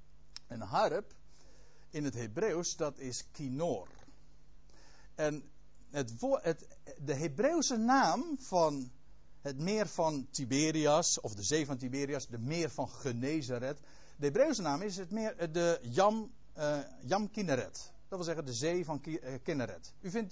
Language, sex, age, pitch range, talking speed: Dutch, male, 60-79, 120-175 Hz, 150 wpm